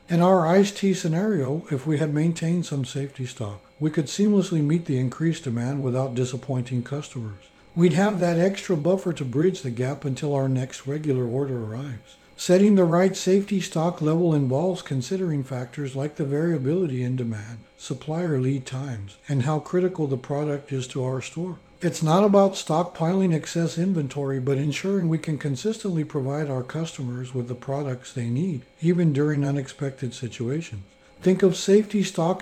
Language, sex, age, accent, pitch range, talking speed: English, male, 60-79, American, 130-175 Hz, 165 wpm